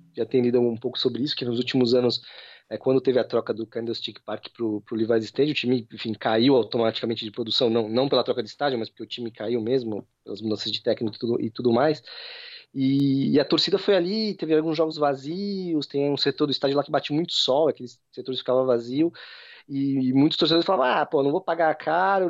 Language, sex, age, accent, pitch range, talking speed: Portuguese, male, 20-39, Brazilian, 120-165 Hz, 225 wpm